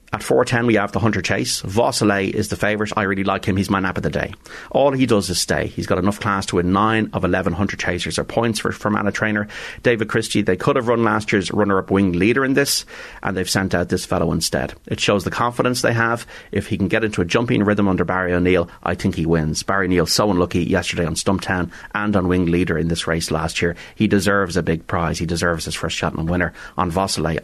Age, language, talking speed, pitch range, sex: 30-49, English, 245 wpm, 95-115 Hz, male